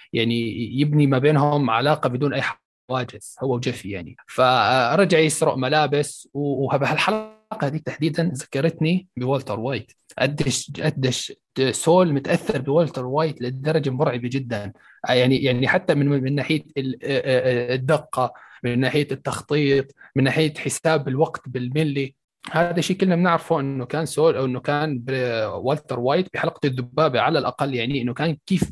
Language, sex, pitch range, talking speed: Arabic, male, 130-155 Hz, 130 wpm